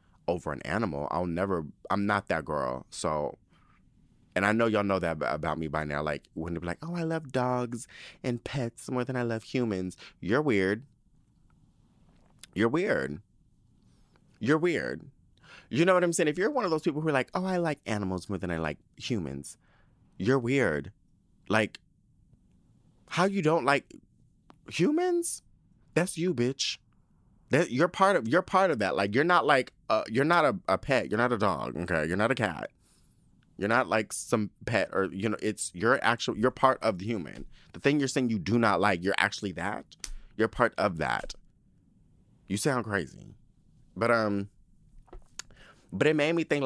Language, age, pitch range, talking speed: English, 30-49, 95-145 Hz, 185 wpm